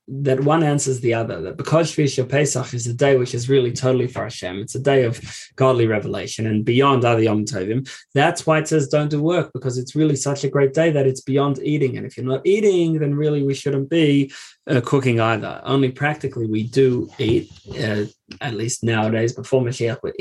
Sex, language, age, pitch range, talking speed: male, English, 20-39, 120-145 Hz, 215 wpm